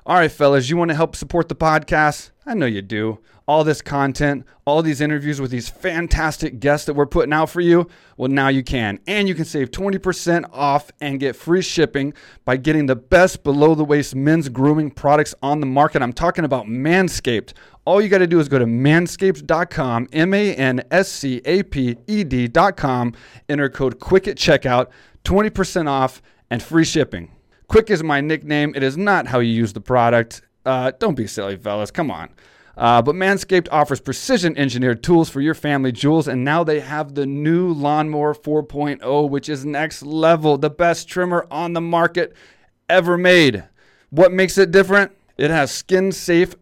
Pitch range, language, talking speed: 135-170 Hz, English, 170 wpm